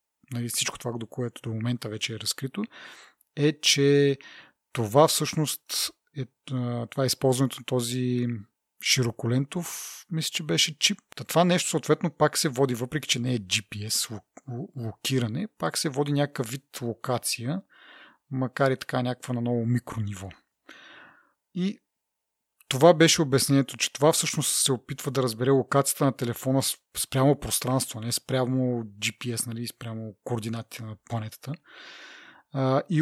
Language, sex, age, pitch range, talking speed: Bulgarian, male, 30-49, 120-155 Hz, 130 wpm